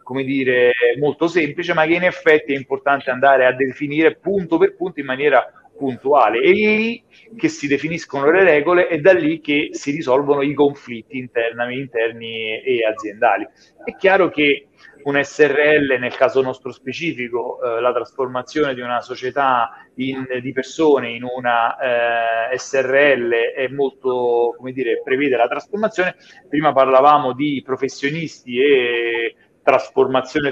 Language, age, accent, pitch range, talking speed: Italian, 30-49, native, 125-160 Hz, 145 wpm